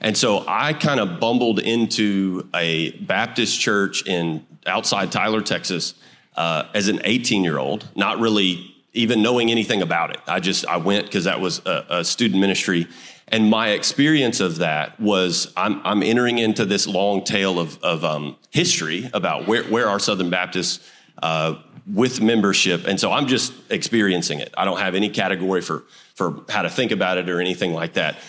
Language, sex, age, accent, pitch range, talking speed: English, male, 30-49, American, 90-110 Hz, 180 wpm